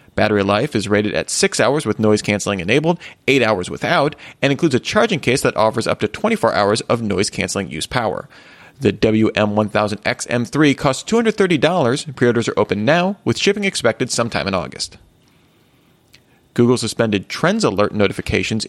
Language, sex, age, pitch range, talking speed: English, male, 30-49, 105-140 Hz, 150 wpm